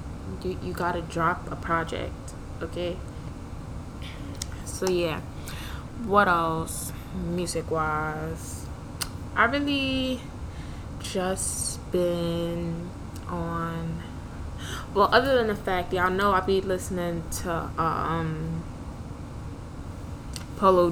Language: English